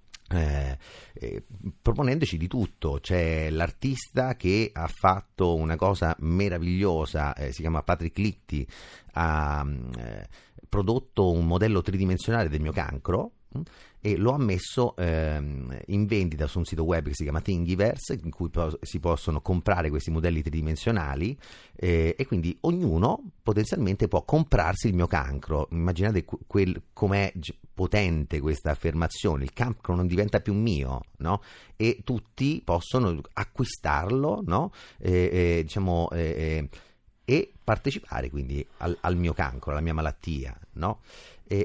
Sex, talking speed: male, 140 wpm